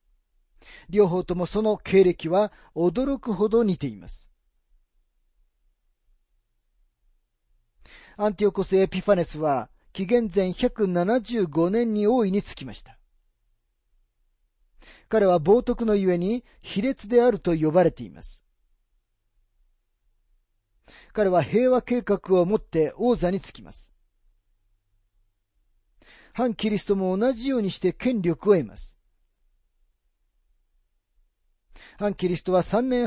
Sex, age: male, 40-59